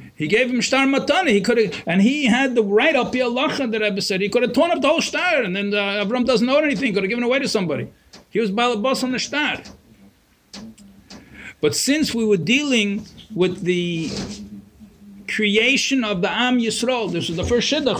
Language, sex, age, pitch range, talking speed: English, male, 50-69, 200-250 Hz, 215 wpm